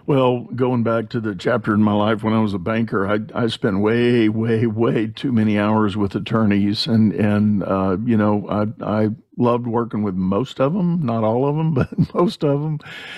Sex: male